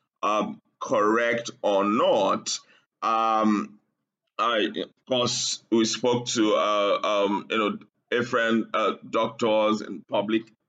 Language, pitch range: English, 105-120 Hz